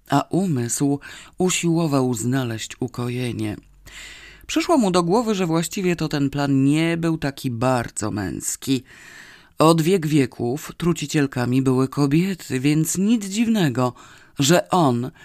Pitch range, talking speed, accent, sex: 130-175 Hz, 120 wpm, native, female